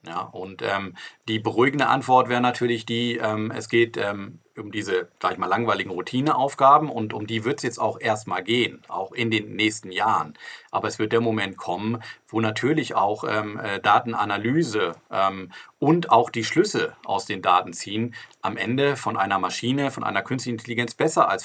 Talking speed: 180 wpm